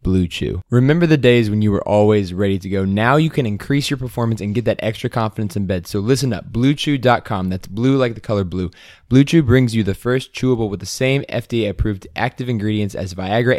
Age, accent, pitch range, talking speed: 20-39, American, 100-120 Hz, 215 wpm